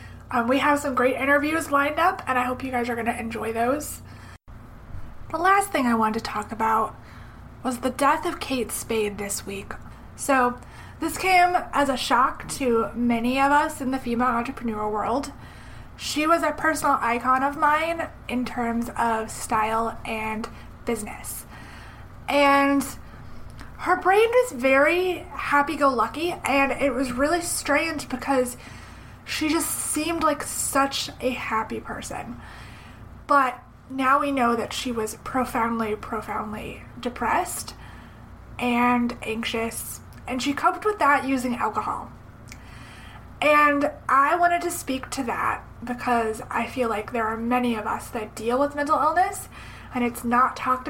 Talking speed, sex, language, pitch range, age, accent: 150 wpm, female, English, 235-290 Hz, 20-39, American